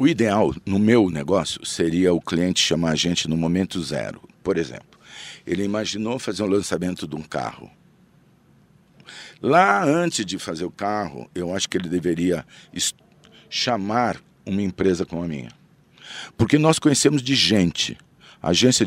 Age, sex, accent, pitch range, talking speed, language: 50-69, male, Brazilian, 90-115 Hz, 155 wpm, Portuguese